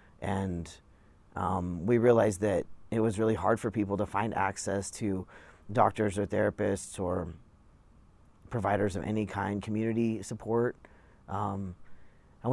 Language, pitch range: English, 95-110 Hz